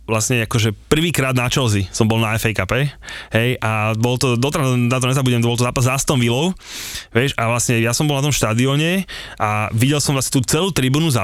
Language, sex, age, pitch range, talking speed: Slovak, male, 20-39, 115-140 Hz, 190 wpm